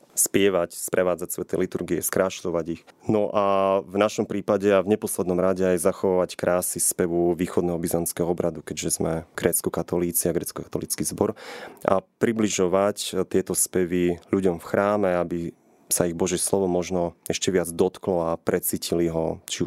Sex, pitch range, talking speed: male, 85-95 Hz, 145 wpm